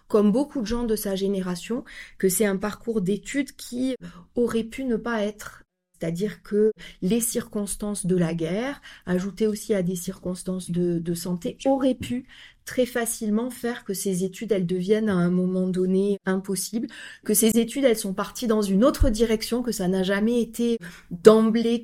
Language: English